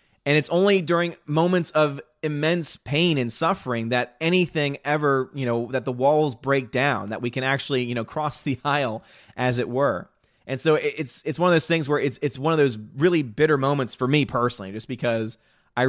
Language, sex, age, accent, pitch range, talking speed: English, male, 20-39, American, 115-140 Hz, 210 wpm